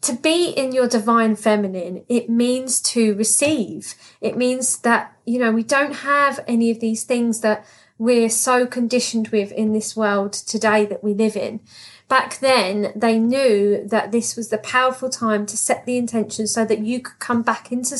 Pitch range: 220-255 Hz